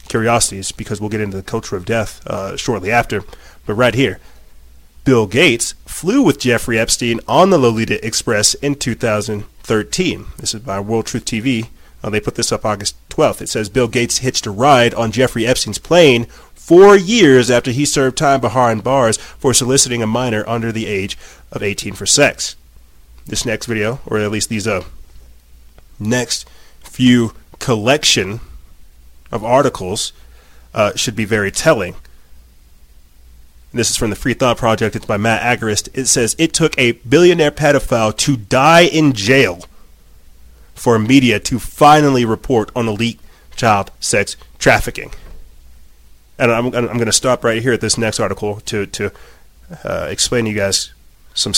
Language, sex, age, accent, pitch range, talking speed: English, male, 30-49, American, 95-125 Hz, 165 wpm